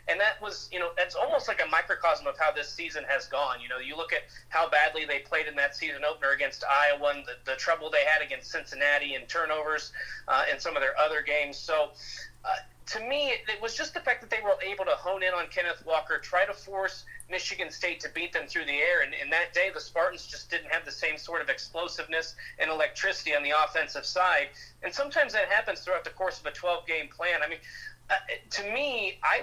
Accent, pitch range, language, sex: American, 150-185 Hz, English, male